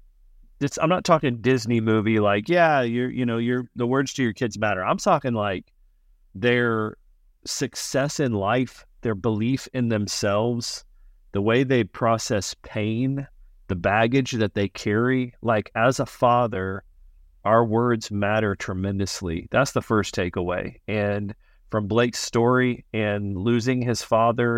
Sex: male